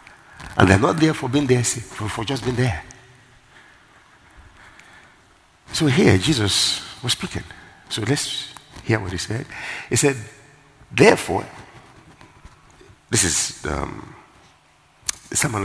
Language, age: English, 60-79